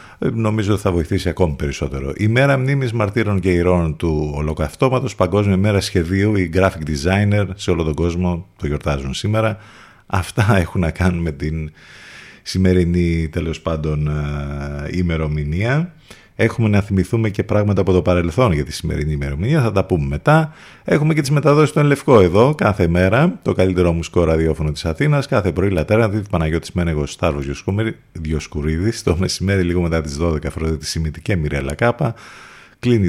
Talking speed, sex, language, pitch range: 160 wpm, male, Greek, 75-105 Hz